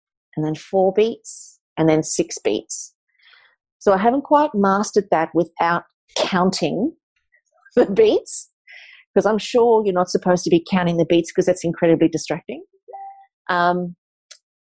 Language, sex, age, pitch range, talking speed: English, female, 40-59, 175-245 Hz, 140 wpm